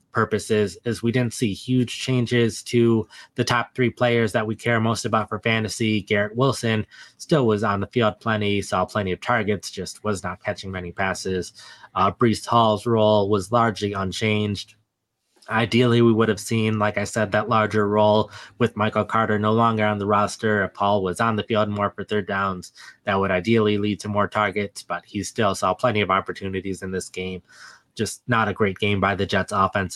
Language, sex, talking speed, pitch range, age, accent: English, male, 200 wpm, 95-110 Hz, 20-39, American